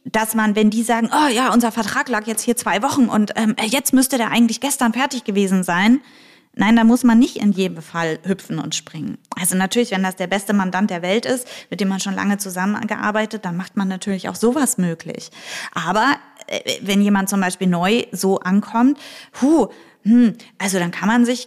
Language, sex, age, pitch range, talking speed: German, female, 20-39, 195-240 Hz, 205 wpm